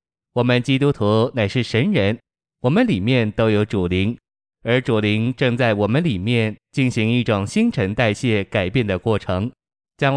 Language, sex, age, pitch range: Chinese, male, 20-39, 100-125 Hz